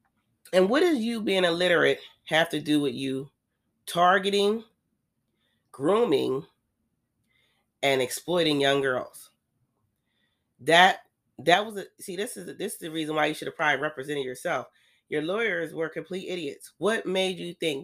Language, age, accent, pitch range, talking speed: English, 30-49, American, 135-170 Hz, 150 wpm